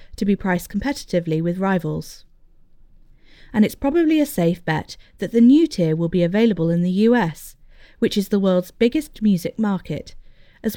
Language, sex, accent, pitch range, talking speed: English, female, British, 170-230 Hz, 165 wpm